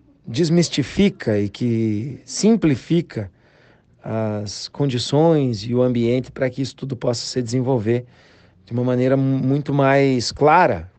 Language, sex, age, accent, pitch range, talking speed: Portuguese, male, 40-59, Brazilian, 115-140 Hz, 125 wpm